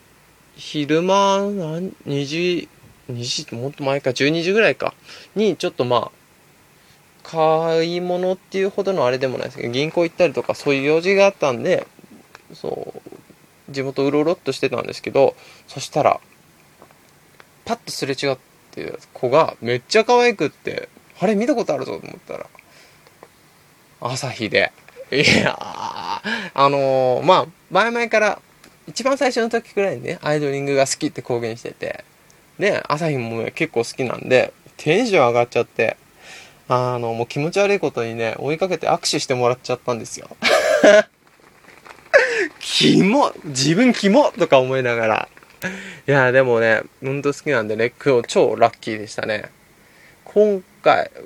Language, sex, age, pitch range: Japanese, male, 20-39, 130-195 Hz